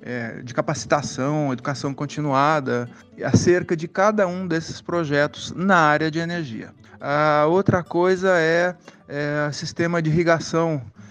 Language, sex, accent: Portuguese, male, Brazilian